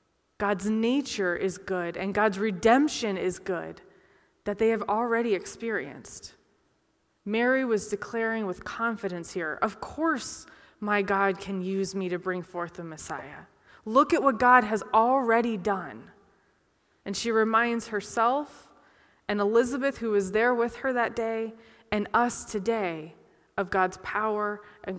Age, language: 20-39, English